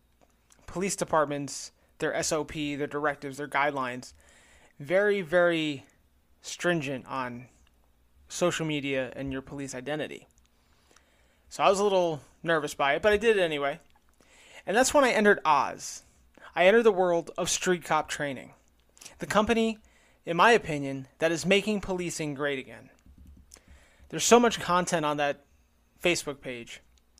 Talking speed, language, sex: 140 wpm, English, male